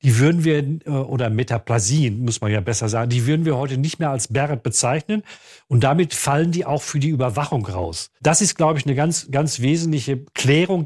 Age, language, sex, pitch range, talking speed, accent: 50-69, German, male, 130-165 Hz, 205 wpm, German